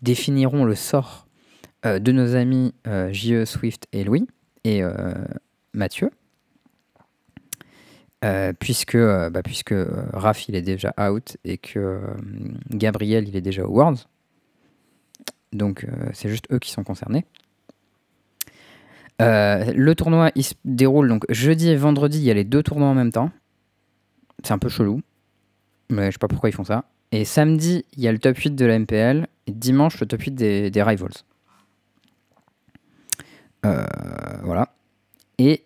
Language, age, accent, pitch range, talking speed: French, 20-39, French, 100-130 Hz, 160 wpm